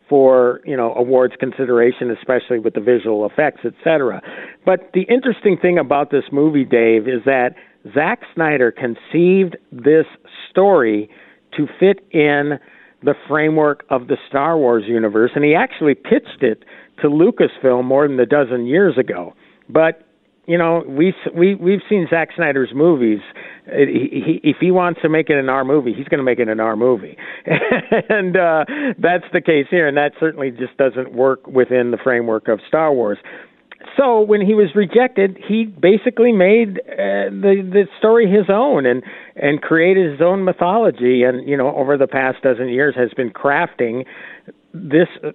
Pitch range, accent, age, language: 130-180 Hz, American, 50-69, English